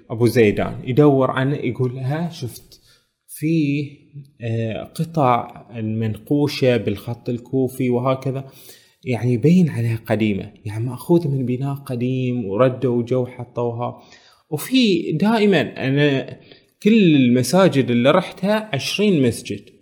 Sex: male